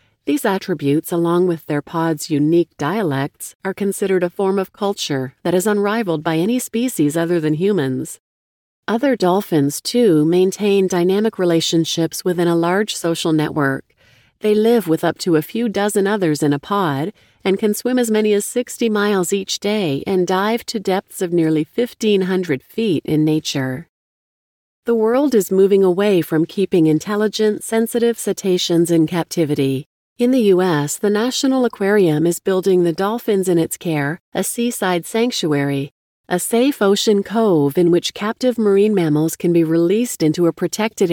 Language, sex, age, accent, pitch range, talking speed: English, female, 40-59, American, 160-205 Hz, 160 wpm